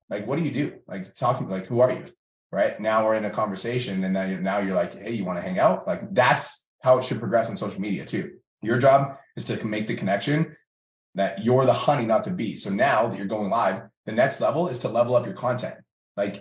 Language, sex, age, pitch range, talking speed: English, male, 20-39, 100-120 Hz, 245 wpm